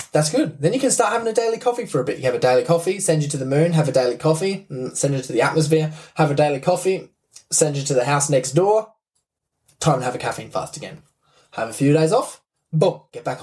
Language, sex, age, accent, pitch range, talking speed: English, male, 20-39, Australian, 130-170 Hz, 260 wpm